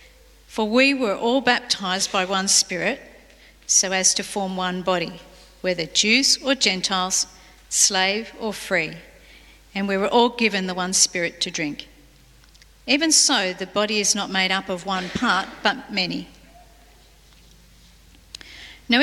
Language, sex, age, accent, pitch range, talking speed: English, female, 40-59, Australian, 185-250 Hz, 140 wpm